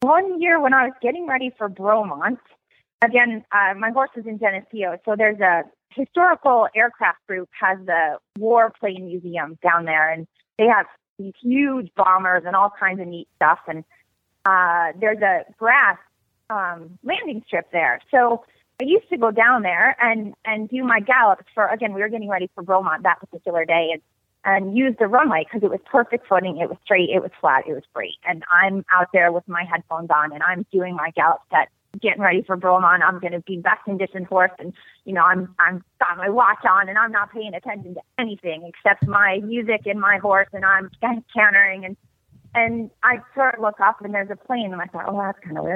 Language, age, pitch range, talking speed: English, 30-49, 180-235 Hz, 215 wpm